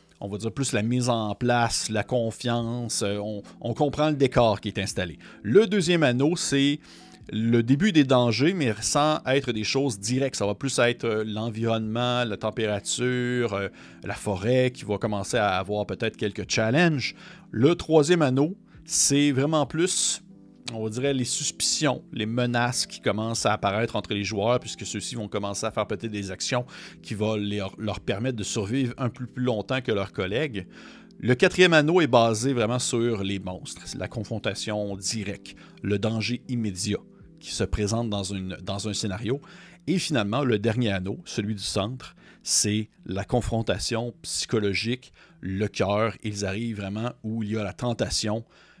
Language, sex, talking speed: French, male, 170 wpm